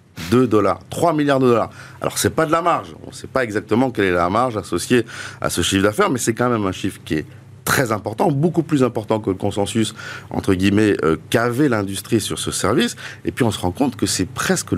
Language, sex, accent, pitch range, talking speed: French, male, French, 95-130 Hz, 245 wpm